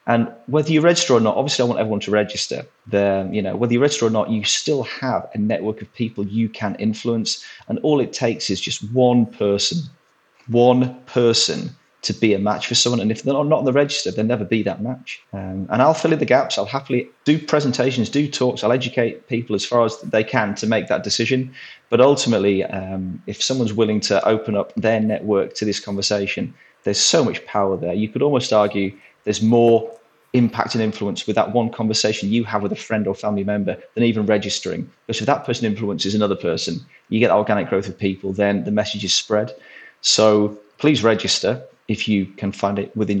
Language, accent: English, British